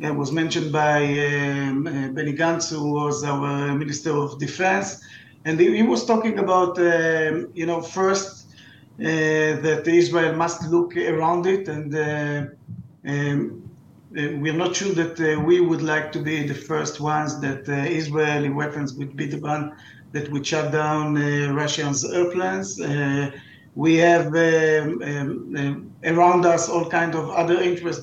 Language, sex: English, male